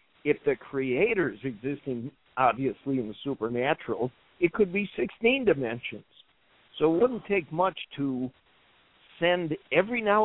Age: 60-79